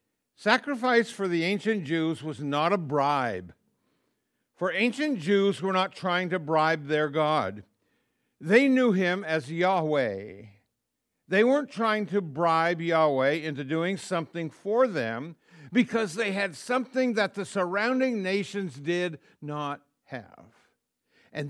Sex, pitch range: male, 160-215 Hz